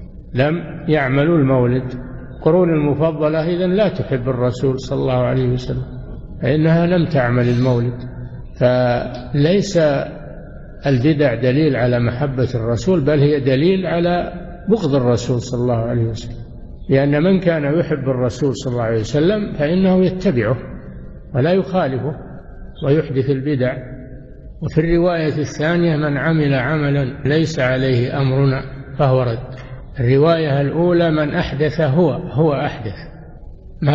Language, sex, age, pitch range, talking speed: Arabic, male, 60-79, 130-170 Hz, 120 wpm